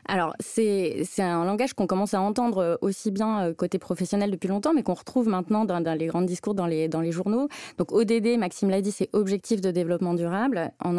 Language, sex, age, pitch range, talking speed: French, female, 20-39, 180-220 Hz, 220 wpm